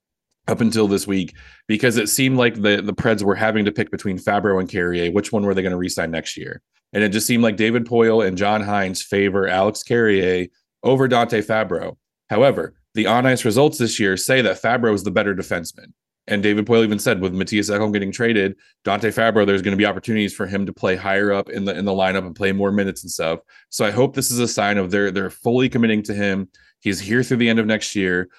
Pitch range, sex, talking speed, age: 95-115 Hz, male, 240 wpm, 30-49